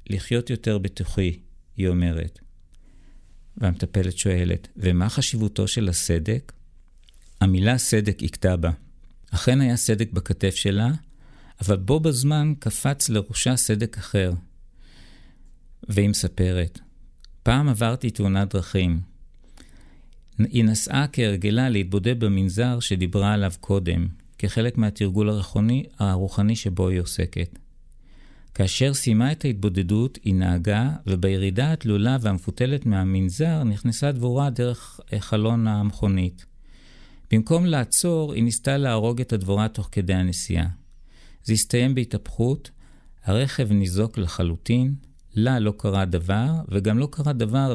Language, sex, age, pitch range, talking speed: Hebrew, male, 50-69, 90-120 Hz, 110 wpm